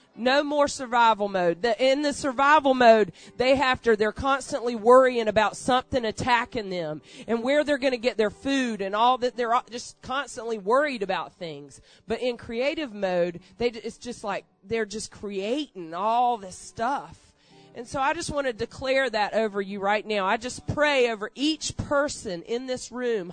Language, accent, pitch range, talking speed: English, American, 215-275 Hz, 185 wpm